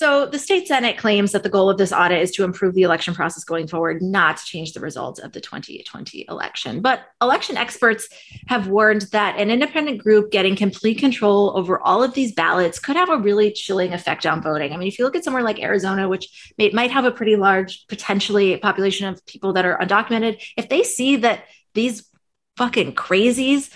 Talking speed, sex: 205 wpm, female